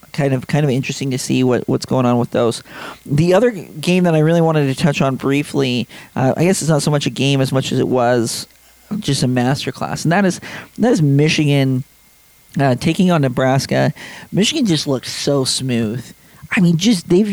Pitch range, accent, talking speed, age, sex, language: 135-170 Hz, American, 210 wpm, 40-59, male, English